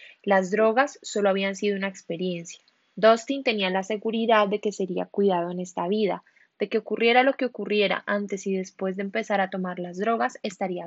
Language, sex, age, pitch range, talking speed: Spanish, female, 10-29, 185-230 Hz, 190 wpm